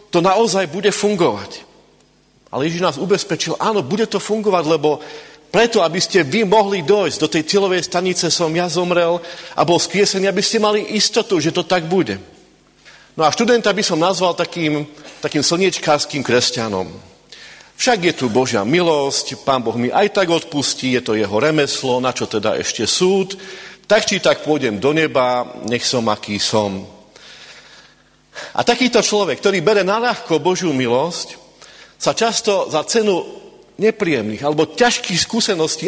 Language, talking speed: Slovak, 155 wpm